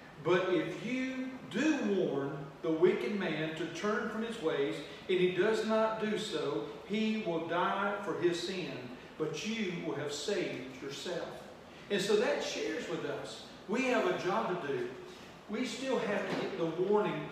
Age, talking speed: 40-59, 175 wpm